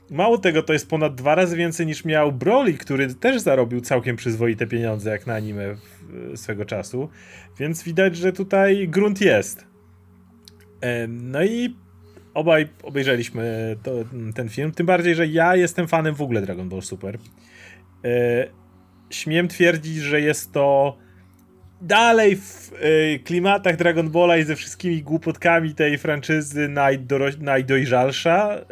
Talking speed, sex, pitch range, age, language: 130 wpm, male, 110-170 Hz, 30-49, Polish